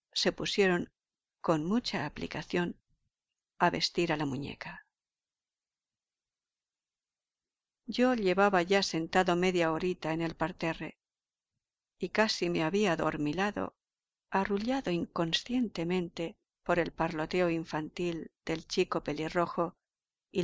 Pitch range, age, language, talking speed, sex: 160-190 Hz, 50-69, Spanish, 100 wpm, female